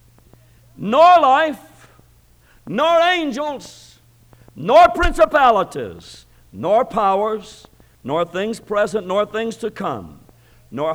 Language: English